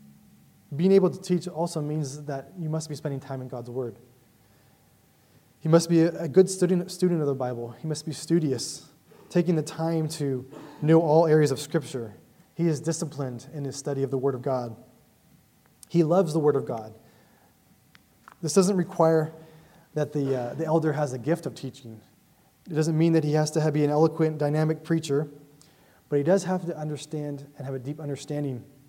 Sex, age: male, 20-39